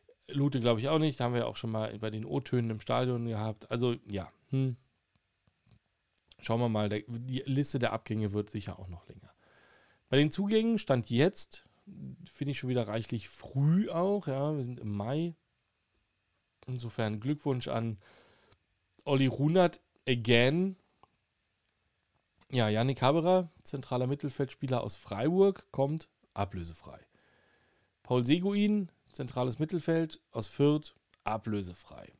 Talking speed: 135 wpm